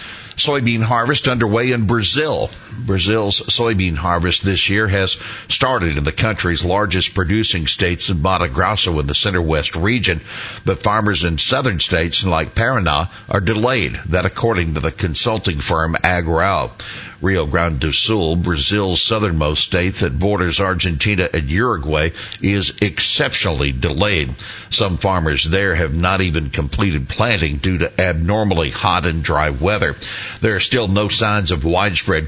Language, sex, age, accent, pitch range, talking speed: English, male, 60-79, American, 85-105 Hz, 145 wpm